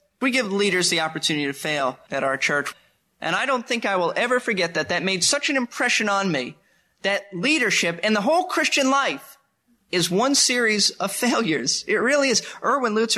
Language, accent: English, American